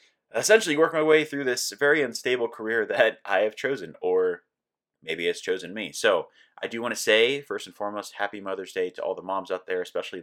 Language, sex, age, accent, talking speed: English, male, 30-49, American, 215 wpm